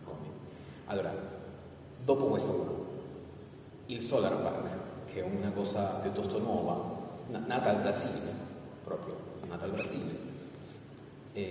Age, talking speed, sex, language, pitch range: 30-49, 110 wpm, male, Italian, 95-115 Hz